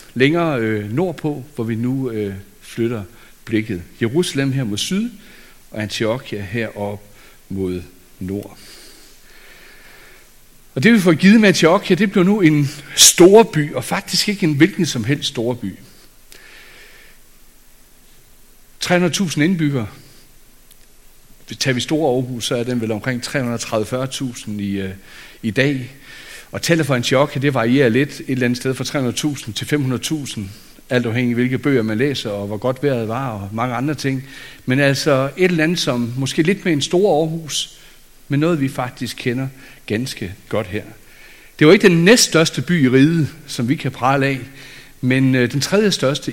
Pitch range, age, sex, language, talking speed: 115-150 Hz, 60-79, male, Danish, 160 wpm